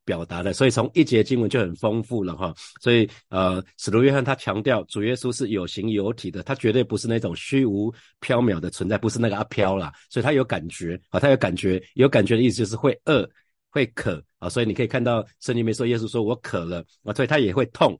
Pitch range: 95-125 Hz